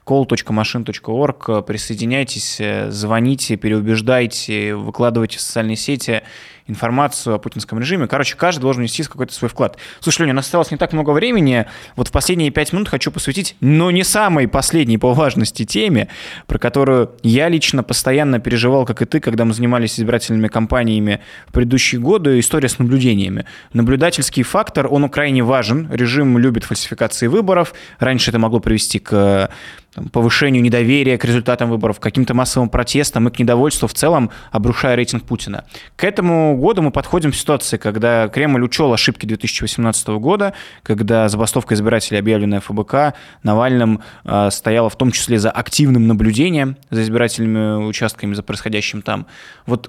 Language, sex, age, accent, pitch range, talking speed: Russian, male, 20-39, native, 110-140 Hz, 150 wpm